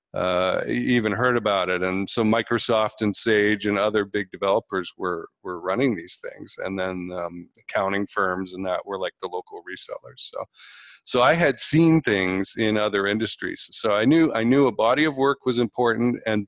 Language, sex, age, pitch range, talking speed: English, male, 50-69, 100-130 Hz, 190 wpm